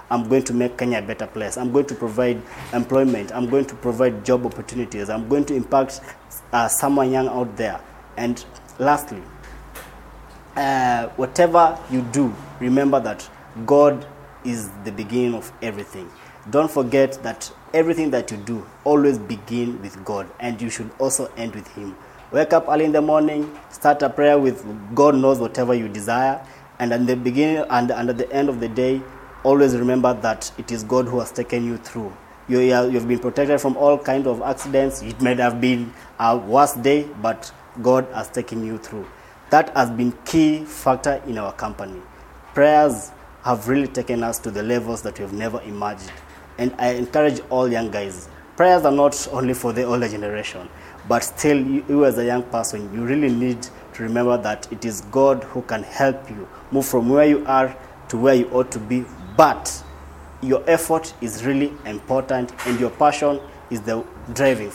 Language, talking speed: English, 185 wpm